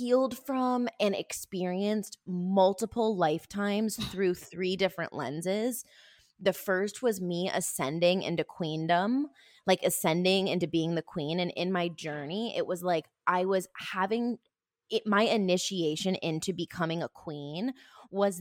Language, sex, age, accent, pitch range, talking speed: English, female, 20-39, American, 170-210 Hz, 135 wpm